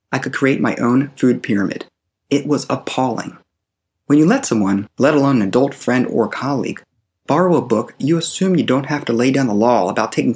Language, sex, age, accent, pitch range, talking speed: English, male, 30-49, American, 105-160 Hz, 210 wpm